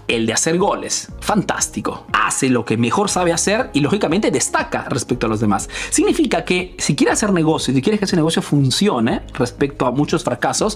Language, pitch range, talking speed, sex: Spanish, 150-215 Hz, 195 wpm, male